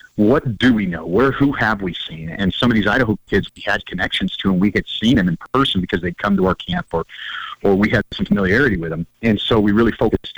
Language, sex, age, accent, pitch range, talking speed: English, male, 40-59, American, 90-110 Hz, 260 wpm